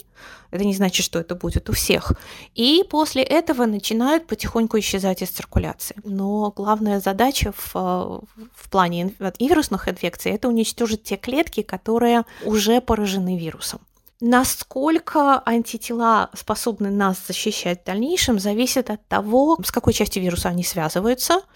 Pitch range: 195-245 Hz